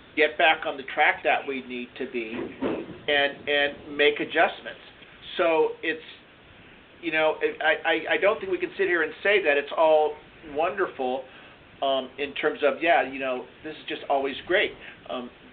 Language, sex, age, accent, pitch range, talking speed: English, male, 50-69, American, 135-155 Hz, 180 wpm